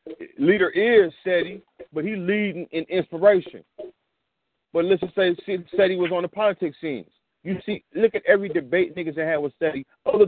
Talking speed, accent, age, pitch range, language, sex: 165 wpm, American, 40-59, 140-180 Hz, English, male